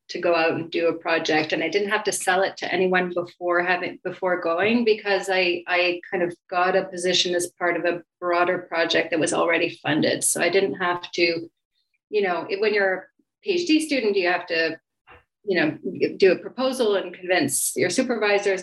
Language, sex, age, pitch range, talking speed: English, female, 30-49, 180-205 Hz, 200 wpm